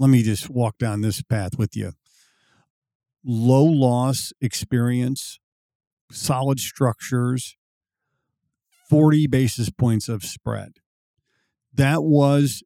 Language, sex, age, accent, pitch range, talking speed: English, male, 50-69, American, 115-145 Hz, 100 wpm